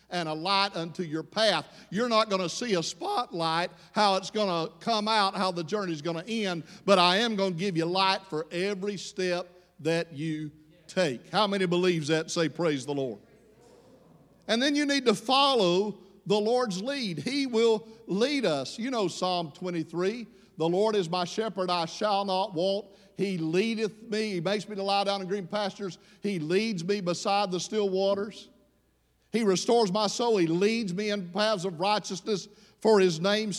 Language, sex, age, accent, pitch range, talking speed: English, male, 50-69, American, 185-215 Hz, 190 wpm